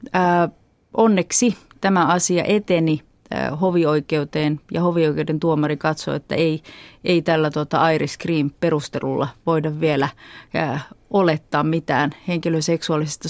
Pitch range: 155-190 Hz